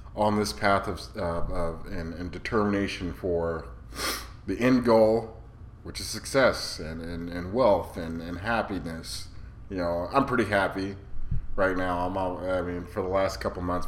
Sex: male